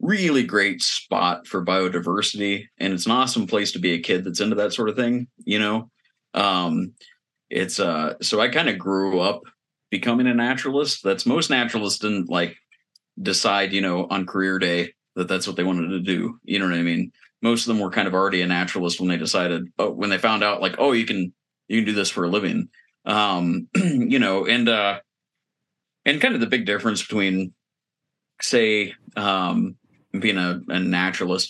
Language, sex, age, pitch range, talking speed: English, male, 30-49, 90-110 Hz, 195 wpm